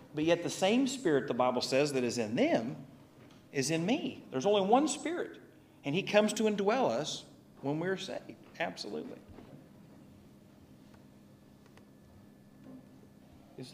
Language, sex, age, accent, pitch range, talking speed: English, male, 40-59, American, 120-190 Hz, 130 wpm